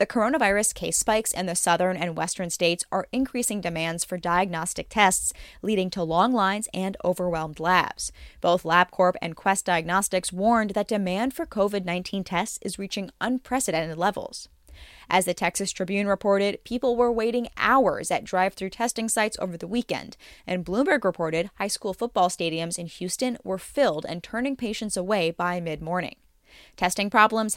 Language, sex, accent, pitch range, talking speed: English, female, American, 175-215 Hz, 160 wpm